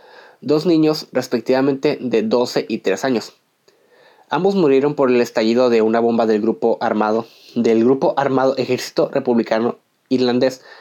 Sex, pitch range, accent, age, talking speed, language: male, 115-150 Hz, Mexican, 20-39, 140 wpm, Spanish